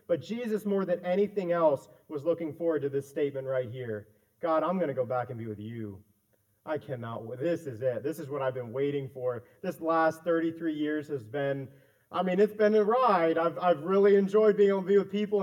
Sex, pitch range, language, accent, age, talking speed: male, 150-205 Hz, English, American, 30-49, 225 wpm